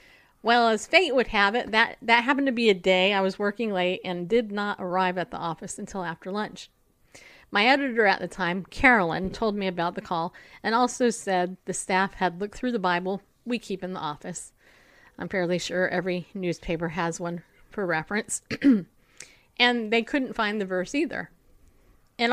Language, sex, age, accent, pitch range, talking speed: English, female, 40-59, American, 185-245 Hz, 190 wpm